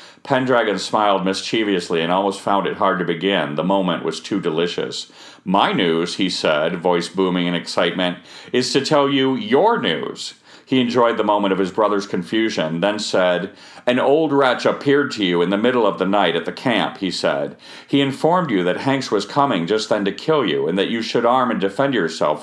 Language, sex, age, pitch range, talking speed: English, male, 40-59, 90-130 Hz, 205 wpm